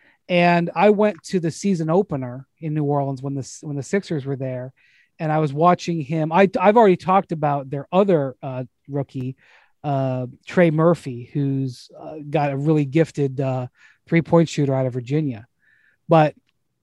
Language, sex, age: English, male, 30-49